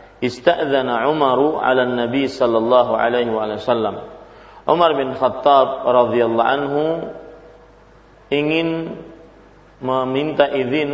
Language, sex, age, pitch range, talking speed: Malay, male, 40-59, 120-145 Hz, 100 wpm